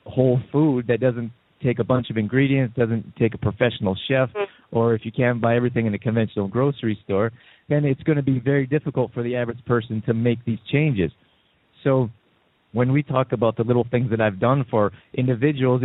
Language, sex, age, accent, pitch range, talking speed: English, male, 30-49, American, 115-135 Hz, 200 wpm